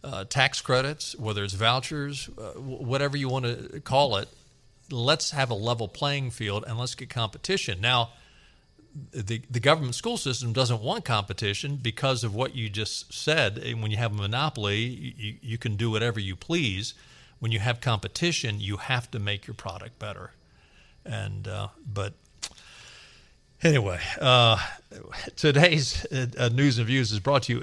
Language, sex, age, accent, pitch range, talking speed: English, male, 50-69, American, 110-140 Hz, 165 wpm